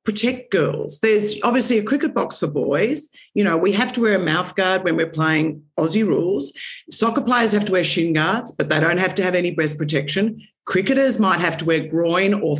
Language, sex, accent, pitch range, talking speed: English, female, Australian, 155-210 Hz, 220 wpm